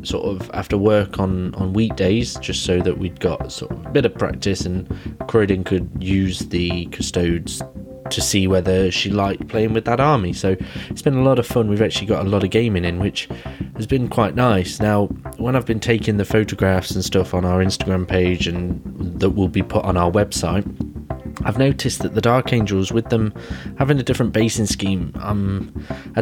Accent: British